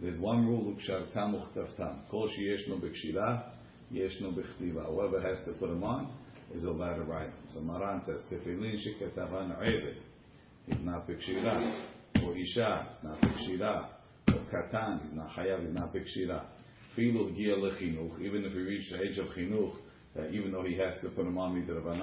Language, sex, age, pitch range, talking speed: English, male, 50-69, 85-105 Hz, 115 wpm